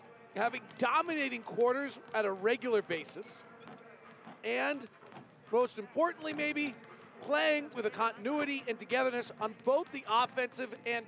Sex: male